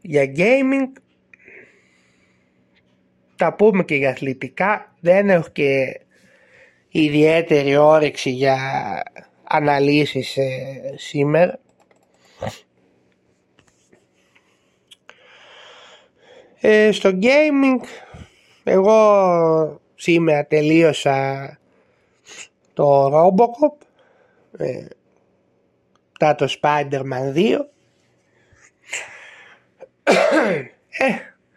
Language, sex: Greek, male